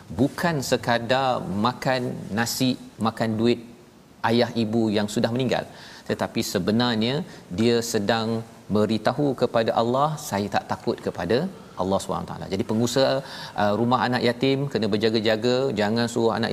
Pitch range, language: 110-125 Hz, Malayalam